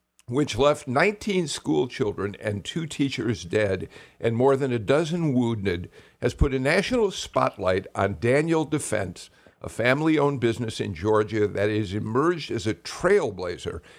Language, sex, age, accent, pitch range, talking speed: English, male, 60-79, American, 110-150 Hz, 140 wpm